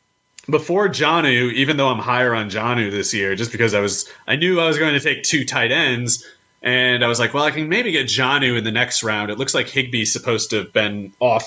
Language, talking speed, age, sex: English, 245 wpm, 30-49, male